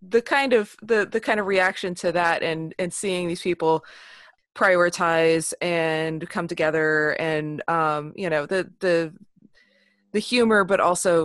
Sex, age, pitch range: female, 20-39, 155-180 Hz